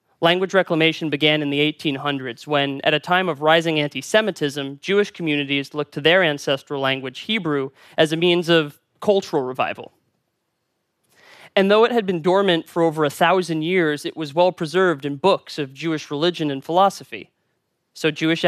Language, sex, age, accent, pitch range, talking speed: Portuguese, male, 30-49, American, 145-180 Hz, 160 wpm